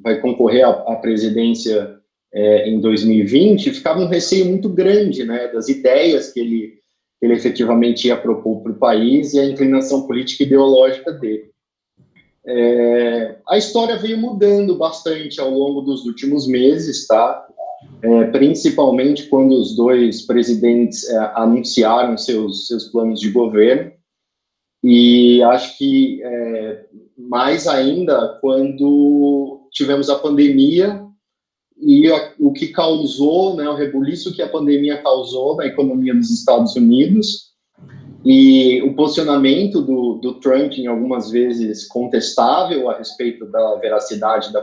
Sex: male